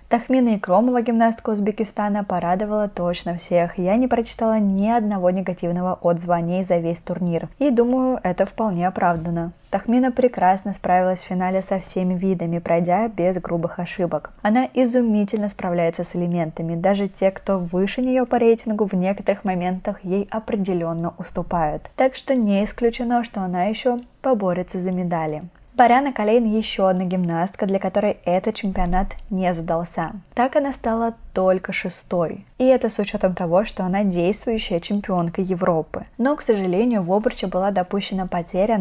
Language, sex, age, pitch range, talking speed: Russian, female, 20-39, 180-220 Hz, 150 wpm